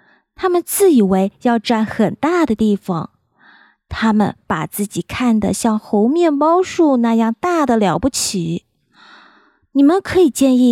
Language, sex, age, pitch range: Chinese, female, 20-39, 200-270 Hz